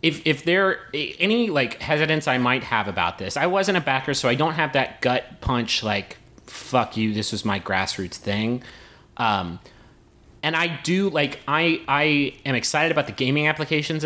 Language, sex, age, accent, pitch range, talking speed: English, male, 30-49, American, 115-155 Hz, 190 wpm